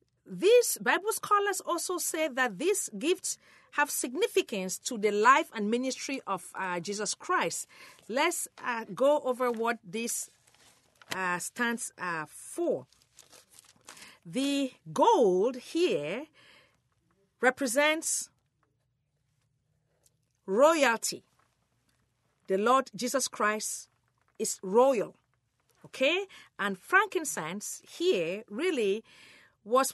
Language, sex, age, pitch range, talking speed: English, female, 50-69, 190-310 Hz, 90 wpm